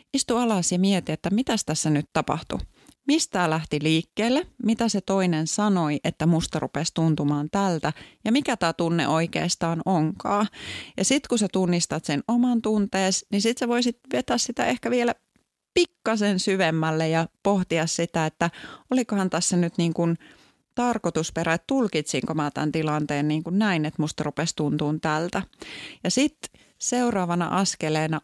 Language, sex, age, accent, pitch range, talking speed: Finnish, female, 30-49, native, 160-210 Hz, 150 wpm